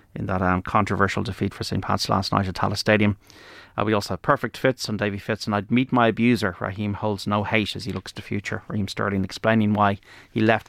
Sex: male